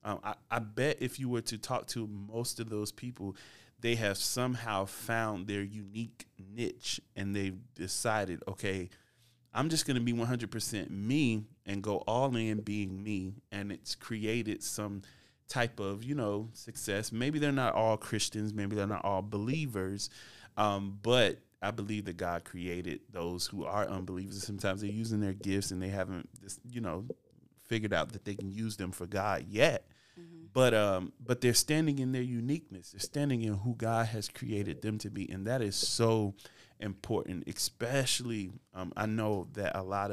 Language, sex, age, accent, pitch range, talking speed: English, male, 30-49, American, 100-120 Hz, 180 wpm